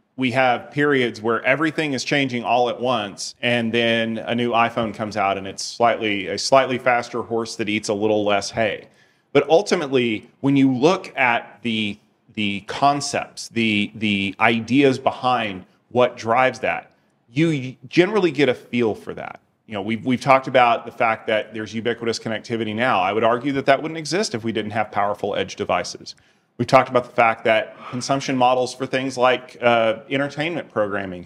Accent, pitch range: American, 110-135 Hz